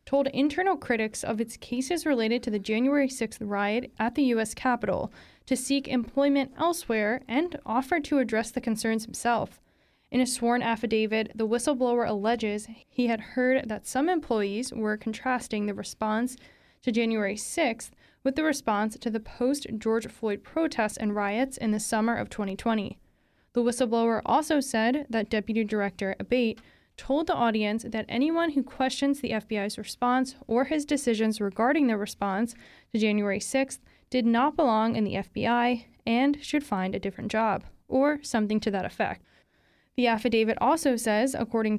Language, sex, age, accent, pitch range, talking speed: English, female, 10-29, American, 220-260 Hz, 160 wpm